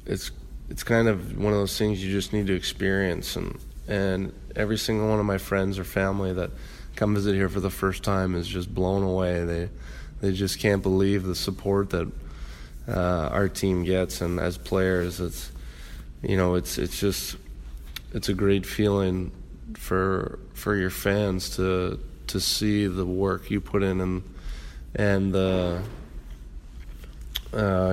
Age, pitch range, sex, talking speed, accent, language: 20-39, 85-95 Hz, male, 165 wpm, American, English